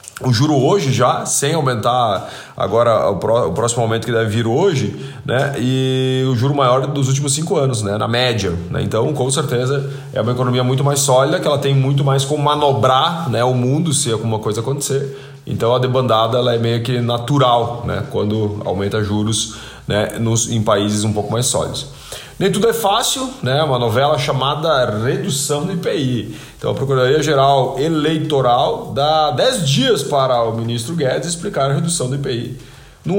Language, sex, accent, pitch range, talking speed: Portuguese, male, Brazilian, 115-140 Hz, 175 wpm